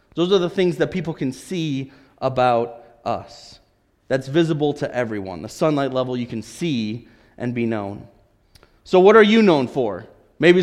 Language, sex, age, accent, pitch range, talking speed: English, male, 30-49, American, 150-185 Hz, 170 wpm